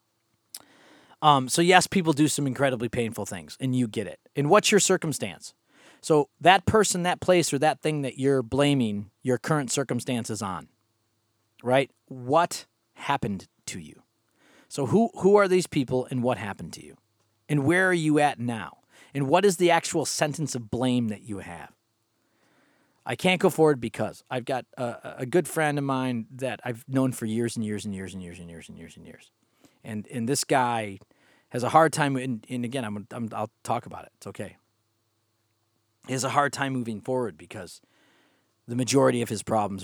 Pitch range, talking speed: 110-145 Hz, 190 wpm